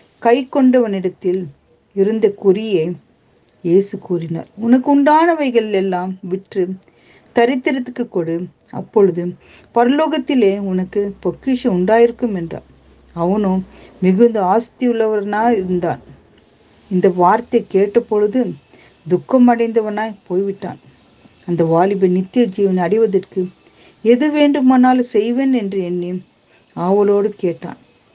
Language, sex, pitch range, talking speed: Tamil, female, 180-235 Hz, 85 wpm